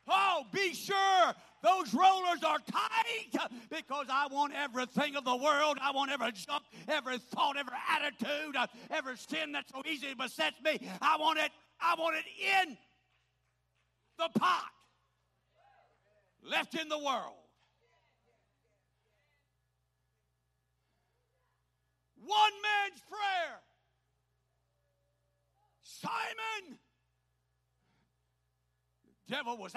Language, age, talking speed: English, 50-69, 95 wpm